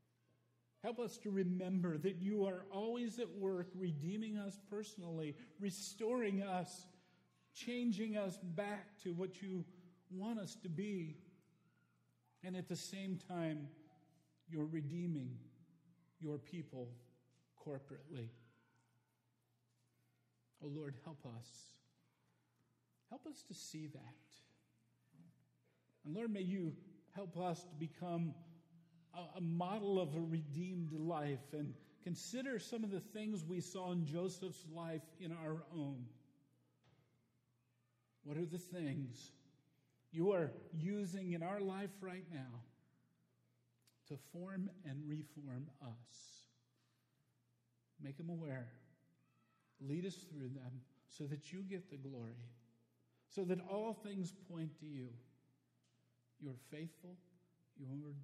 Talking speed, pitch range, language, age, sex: 115 wpm, 125-185 Hz, English, 50-69, male